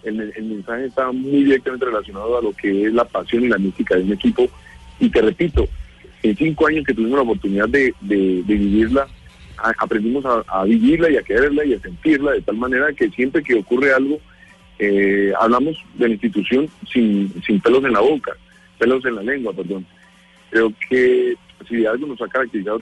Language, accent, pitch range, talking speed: Spanish, Colombian, 105-140 Hz, 195 wpm